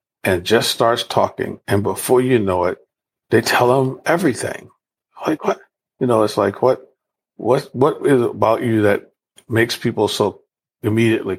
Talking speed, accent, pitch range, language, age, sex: 165 wpm, American, 100-130 Hz, English, 50-69, male